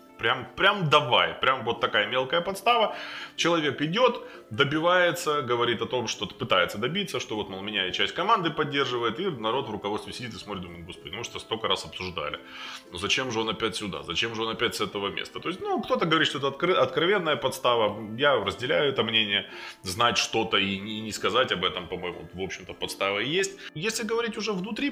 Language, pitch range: Russian, 110-175 Hz